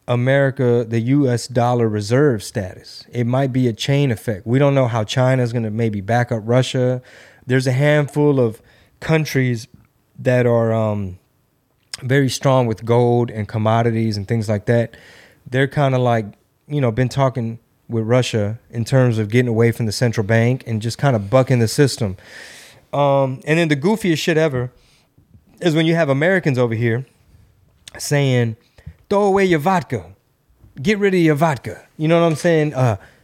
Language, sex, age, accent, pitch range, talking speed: English, male, 20-39, American, 115-155 Hz, 175 wpm